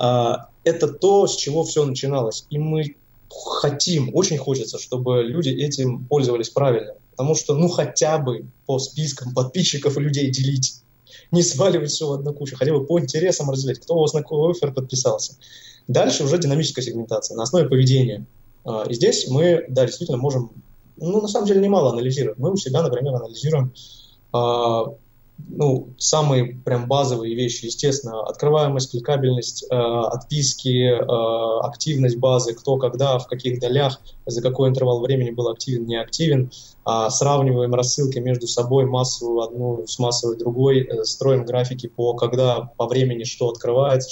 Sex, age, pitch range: male, 20-39, 120-145 Hz